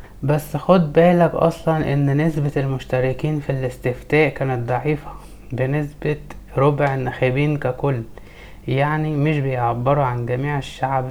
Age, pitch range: 20-39, 125-150 Hz